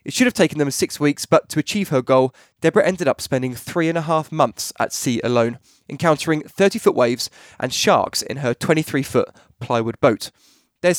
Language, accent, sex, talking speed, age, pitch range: English, British, male, 190 wpm, 20-39, 130-170 Hz